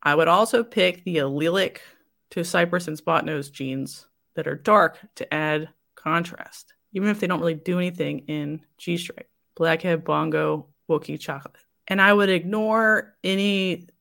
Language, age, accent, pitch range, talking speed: English, 30-49, American, 155-195 Hz, 150 wpm